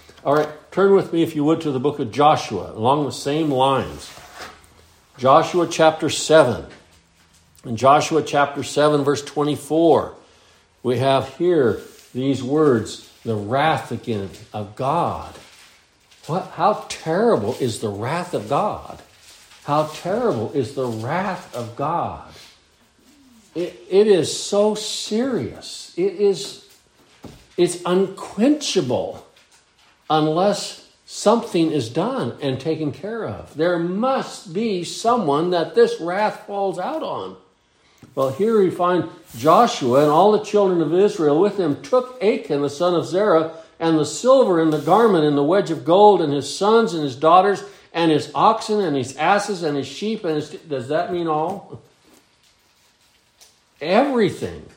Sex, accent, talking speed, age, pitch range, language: male, American, 140 wpm, 60-79, 145-200 Hz, English